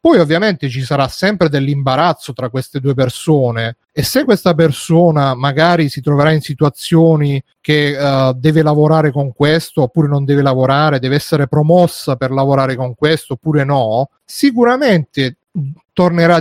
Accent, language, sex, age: native, Italian, male, 30-49